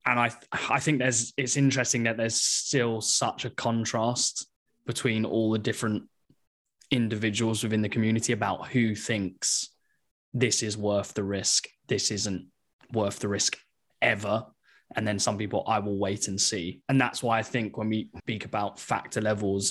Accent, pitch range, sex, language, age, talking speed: British, 105-120 Hz, male, English, 10-29, 170 wpm